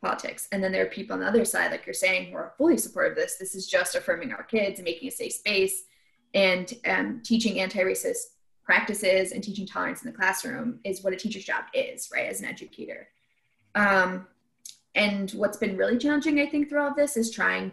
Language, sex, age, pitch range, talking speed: English, female, 20-39, 190-265 Hz, 215 wpm